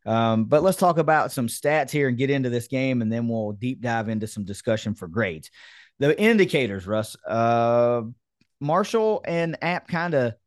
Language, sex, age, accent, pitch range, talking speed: English, male, 30-49, American, 110-150 Hz, 185 wpm